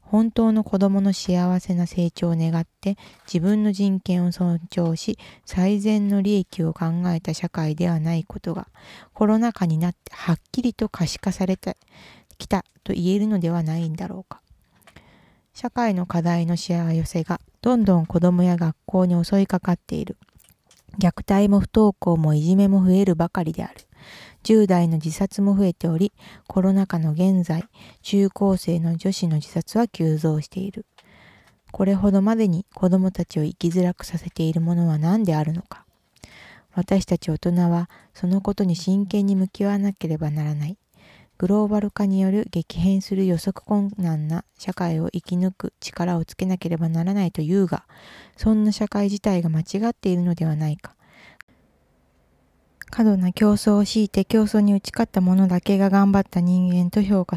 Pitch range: 170-200 Hz